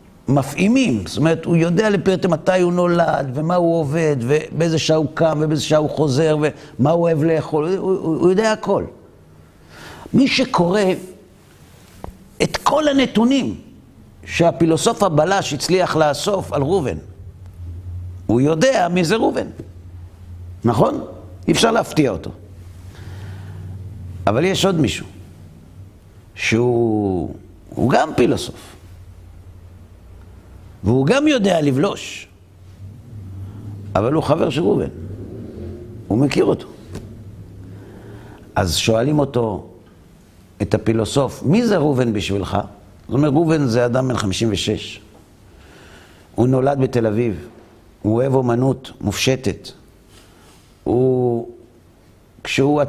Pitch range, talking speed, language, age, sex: 95-155 Hz, 110 wpm, Hebrew, 50-69, male